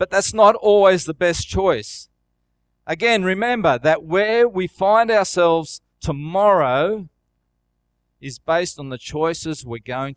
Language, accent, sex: English, Australian, male